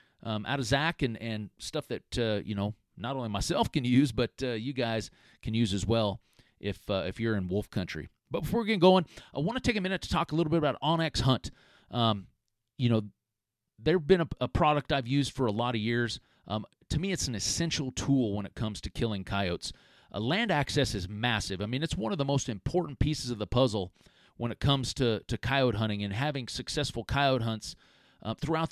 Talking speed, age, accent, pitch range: 230 wpm, 40-59, American, 105-140 Hz